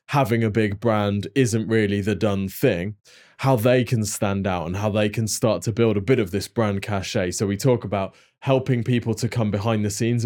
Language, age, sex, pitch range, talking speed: English, 20-39, male, 100-115 Hz, 220 wpm